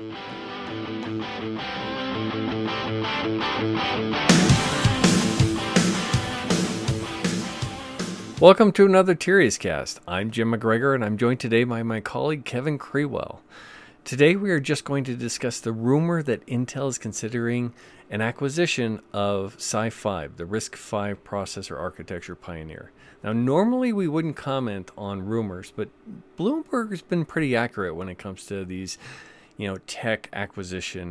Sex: male